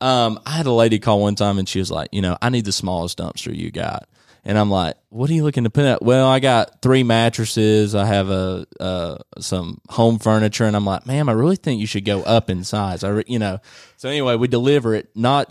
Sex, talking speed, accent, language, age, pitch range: male, 255 wpm, American, English, 20-39, 100-130 Hz